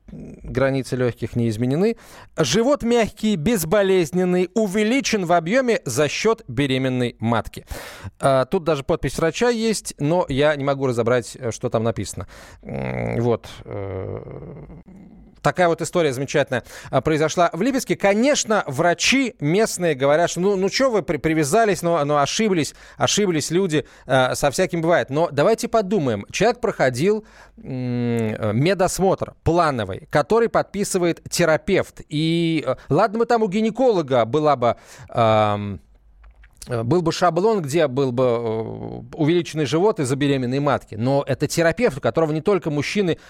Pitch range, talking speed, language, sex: 130-185 Hz, 130 wpm, Russian, male